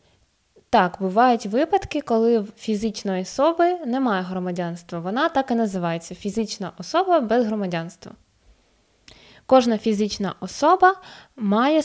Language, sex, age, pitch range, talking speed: Ukrainian, female, 20-39, 195-260 Hz, 110 wpm